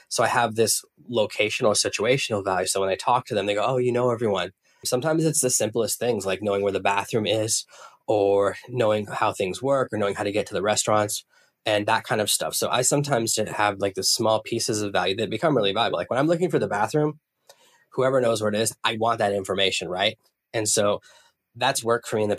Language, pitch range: English, 100-115 Hz